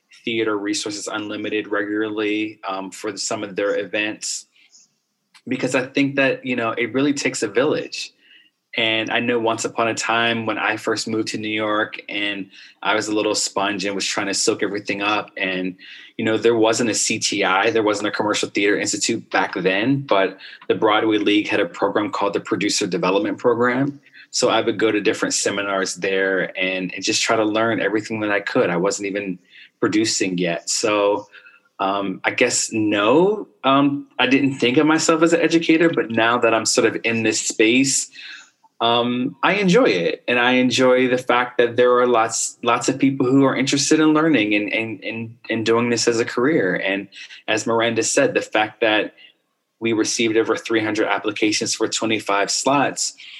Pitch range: 105-125 Hz